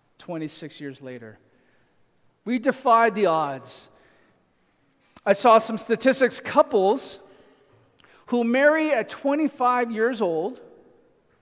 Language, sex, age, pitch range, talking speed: English, male, 40-59, 180-240 Hz, 95 wpm